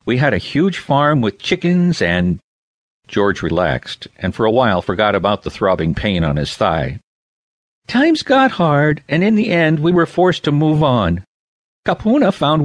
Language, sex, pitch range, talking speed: English, male, 105-170 Hz, 175 wpm